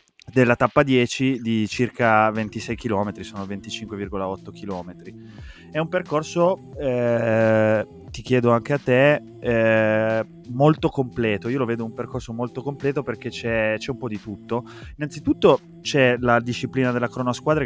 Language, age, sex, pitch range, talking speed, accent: Italian, 20-39, male, 105-125 Hz, 145 wpm, native